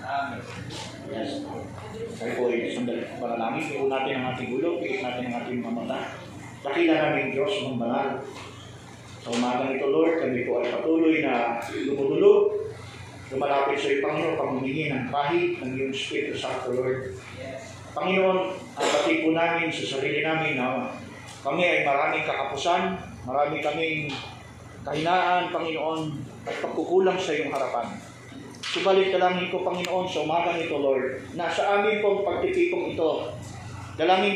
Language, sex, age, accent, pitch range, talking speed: Filipino, male, 30-49, native, 135-185 Hz, 80 wpm